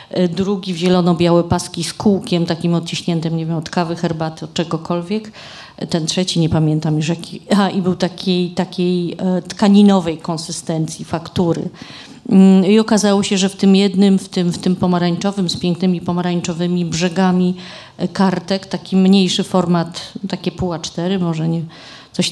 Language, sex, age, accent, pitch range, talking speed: Polish, female, 40-59, native, 175-195 Hz, 150 wpm